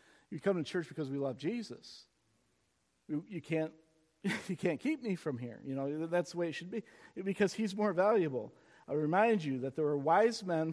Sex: male